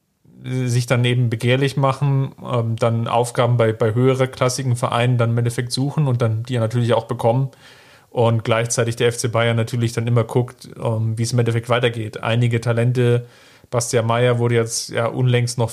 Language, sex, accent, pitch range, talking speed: German, male, German, 115-130 Hz, 170 wpm